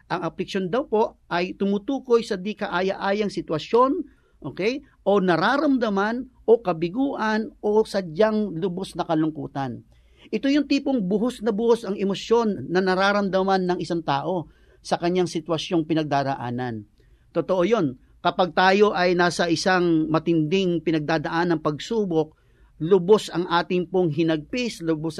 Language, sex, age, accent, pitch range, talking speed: English, male, 50-69, Filipino, 165-215 Hz, 130 wpm